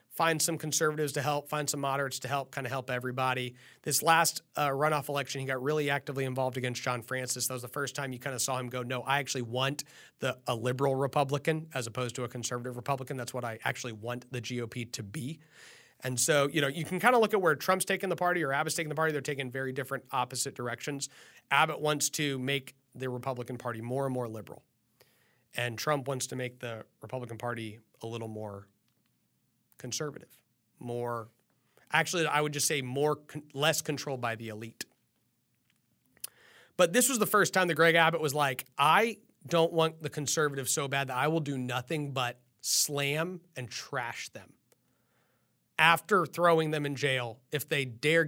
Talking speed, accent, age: 195 wpm, American, 30-49